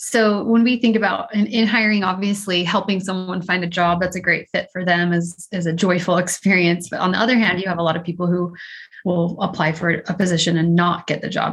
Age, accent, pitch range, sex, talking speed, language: 30-49, American, 175-200 Hz, female, 240 wpm, English